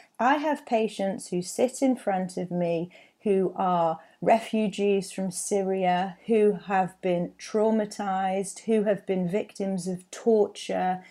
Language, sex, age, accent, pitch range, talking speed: English, female, 30-49, British, 175-225 Hz, 130 wpm